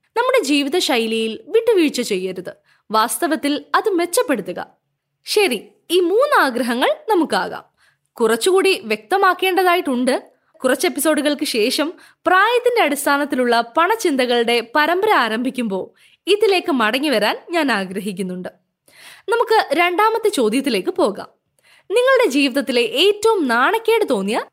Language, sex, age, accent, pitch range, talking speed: Malayalam, female, 20-39, native, 240-375 Hz, 85 wpm